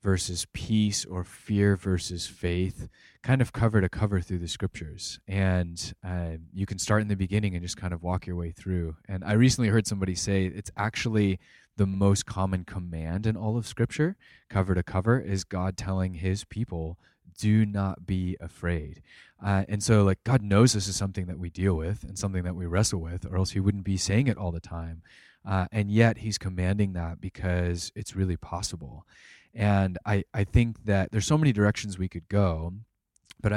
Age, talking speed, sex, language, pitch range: 20-39, 195 wpm, male, English, 90-110 Hz